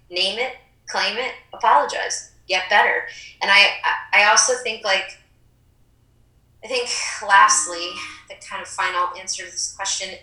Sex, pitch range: female, 175-225 Hz